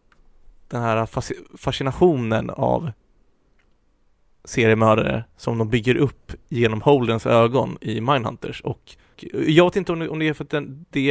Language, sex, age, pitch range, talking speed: Swedish, male, 30-49, 115-140 Hz, 130 wpm